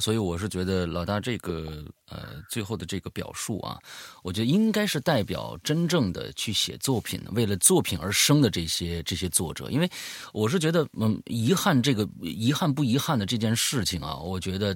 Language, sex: Chinese, male